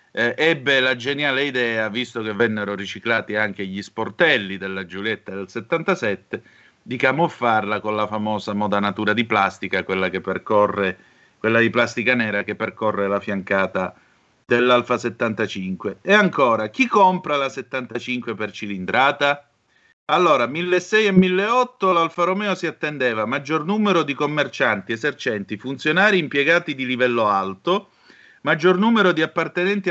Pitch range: 105-165 Hz